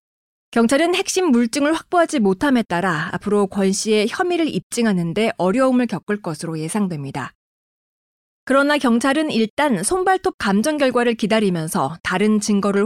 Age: 30-49